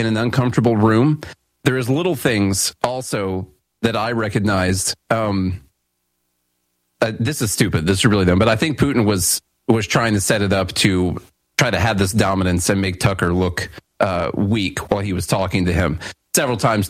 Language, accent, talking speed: English, American, 185 wpm